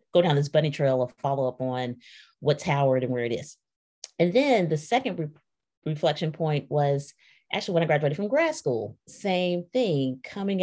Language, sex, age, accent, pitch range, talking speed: English, female, 30-49, American, 145-175 Hz, 170 wpm